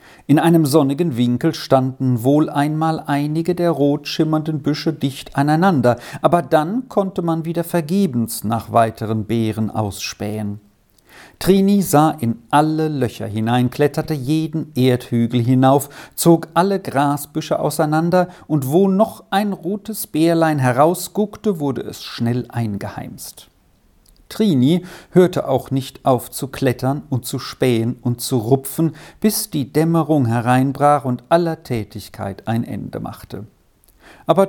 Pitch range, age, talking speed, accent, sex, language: 120-165 Hz, 50-69, 125 wpm, German, male, German